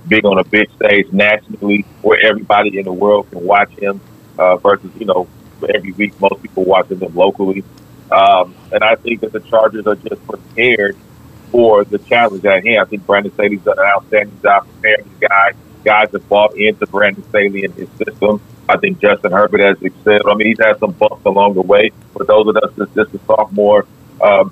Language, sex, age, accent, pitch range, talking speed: English, male, 40-59, American, 100-110 Hz, 205 wpm